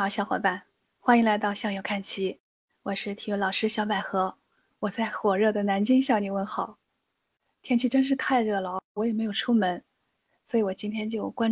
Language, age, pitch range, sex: Chinese, 20-39, 200-240 Hz, female